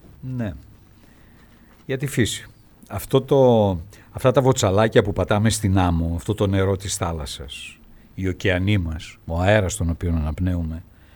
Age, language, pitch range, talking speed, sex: 60-79, Greek, 95-120 Hz, 140 wpm, male